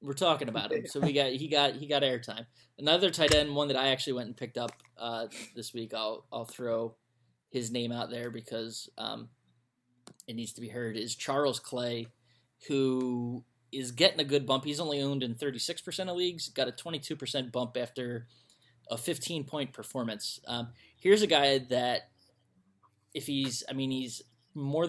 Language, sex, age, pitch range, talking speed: English, male, 20-39, 120-135 Hz, 195 wpm